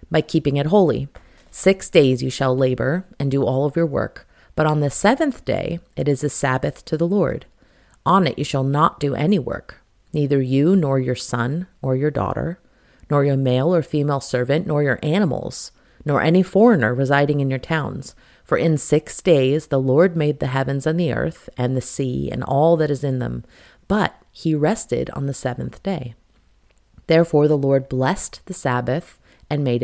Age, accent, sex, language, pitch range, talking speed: 30-49, American, female, English, 130-160 Hz, 190 wpm